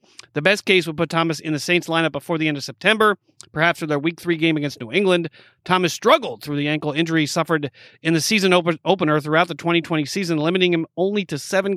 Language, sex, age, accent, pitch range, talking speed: English, male, 40-59, American, 150-185 Hz, 225 wpm